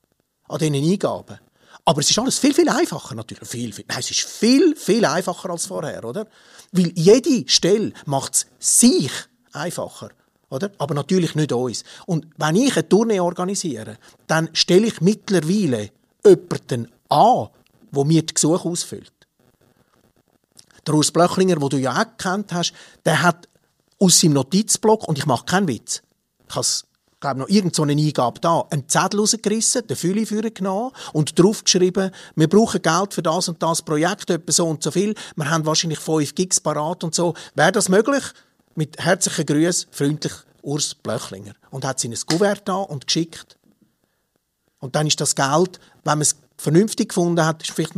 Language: German